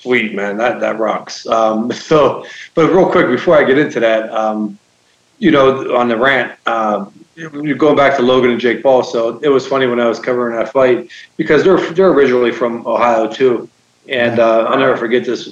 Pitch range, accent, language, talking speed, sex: 110-135 Hz, American, English, 205 wpm, male